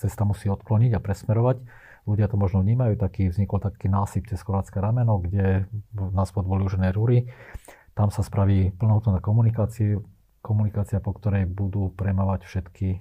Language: Slovak